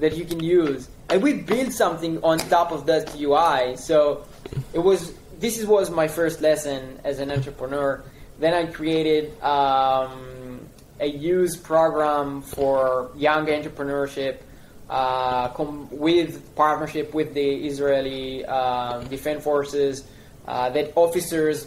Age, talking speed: 20-39, 130 wpm